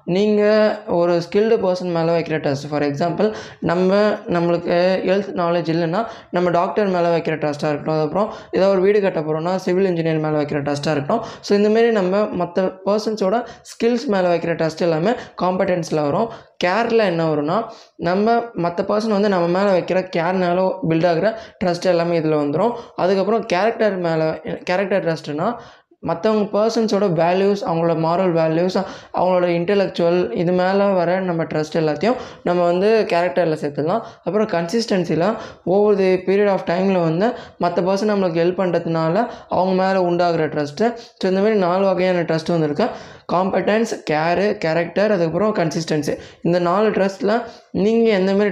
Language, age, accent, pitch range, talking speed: Tamil, 20-39, native, 165-205 Hz, 145 wpm